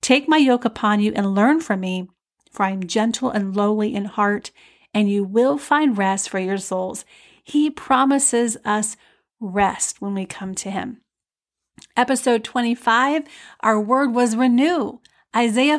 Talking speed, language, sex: 155 wpm, English, female